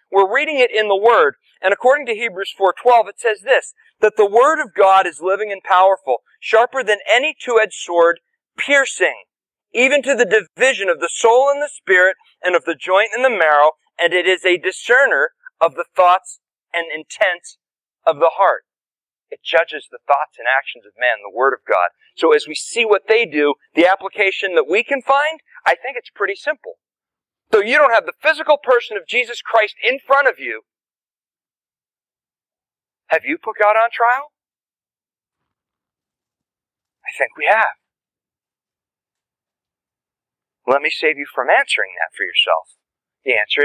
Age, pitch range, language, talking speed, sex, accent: 40-59, 185-275 Hz, English, 170 wpm, male, American